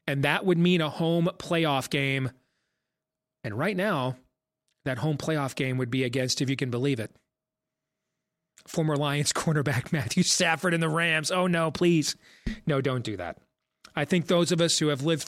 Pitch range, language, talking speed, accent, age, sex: 135-180 Hz, English, 180 wpm, American, 30-49, male